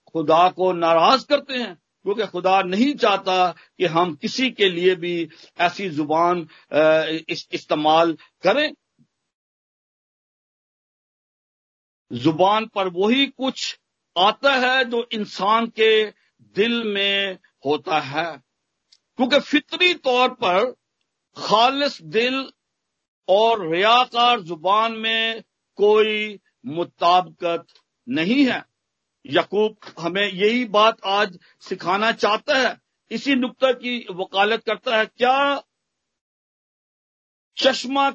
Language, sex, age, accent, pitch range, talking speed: Hindi, male, 50-69, native, 190-250 Hz, 100 wpm